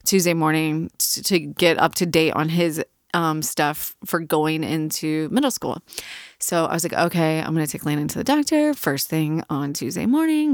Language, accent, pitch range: English, American, 160-205 Hz